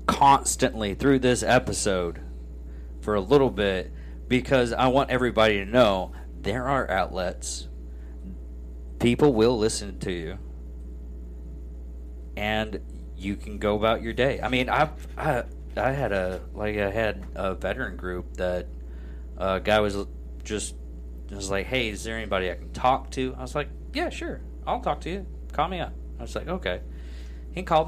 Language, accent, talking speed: English, American, 160 wpm